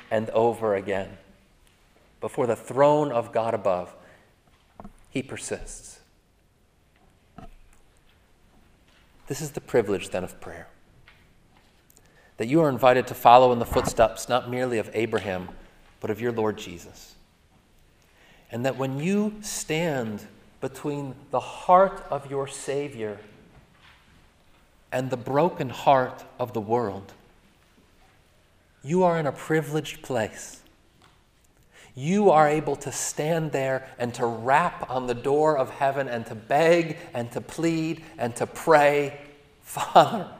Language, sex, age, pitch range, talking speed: English, male, 40-59, 110-160 Hz, 125 wpm